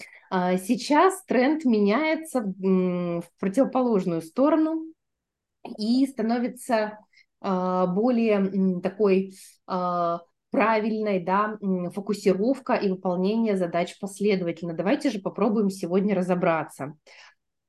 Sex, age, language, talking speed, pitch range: female, 20-39, Russian, 75 wpm, 195-255 Hz